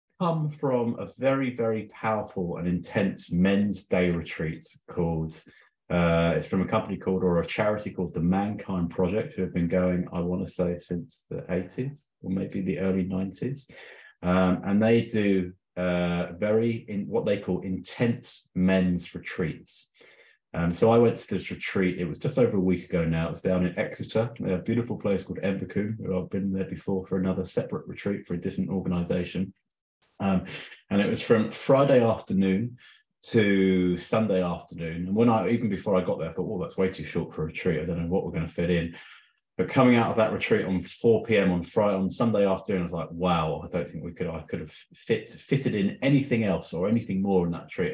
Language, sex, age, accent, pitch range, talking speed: English, male, 30-49, British, 90-105 Hz, 205 wpm